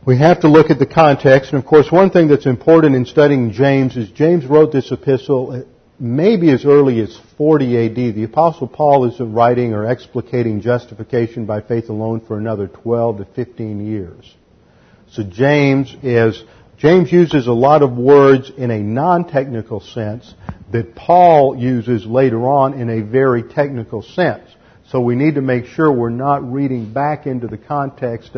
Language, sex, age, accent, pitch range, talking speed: English, male, 50-69, American, 115-145 Hz, 175 wpm